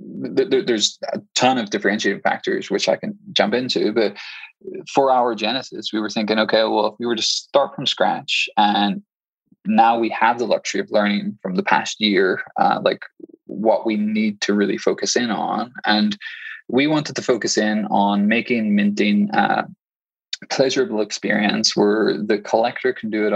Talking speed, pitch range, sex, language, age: 170 wpm, 105-135 Hz, male, English, 20-39